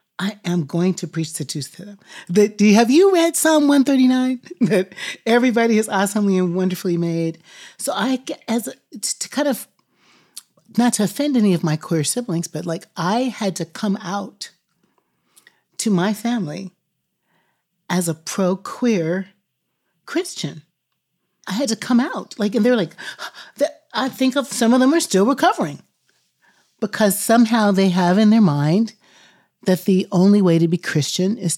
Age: 40-59